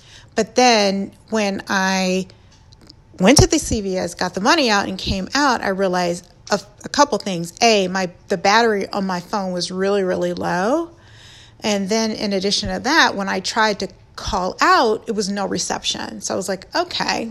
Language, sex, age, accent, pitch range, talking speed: English, female, 40-59, American, 185-245 Hz, 185 wpm